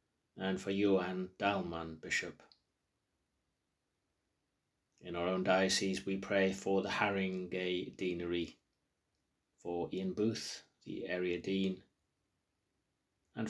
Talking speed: 100 wpm